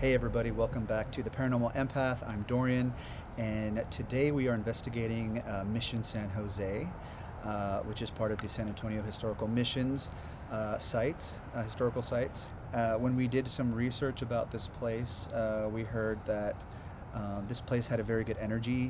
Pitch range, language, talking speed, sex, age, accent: 105-120 Hz, English, 175 wpm, male, 30-49, American